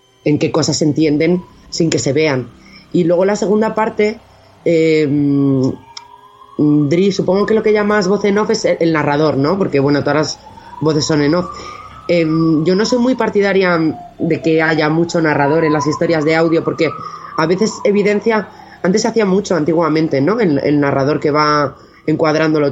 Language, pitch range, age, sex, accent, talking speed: Spanish, 145-175 Hz, 20-39, female, Spanish, 180 wpm